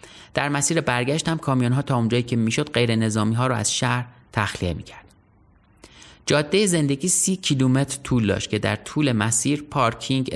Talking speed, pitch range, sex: 155 wpm, 110-140 Hz, male